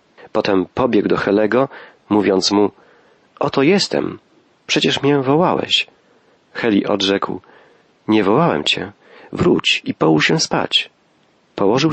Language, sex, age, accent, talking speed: Polish, male, 40-59, native, 110 wpm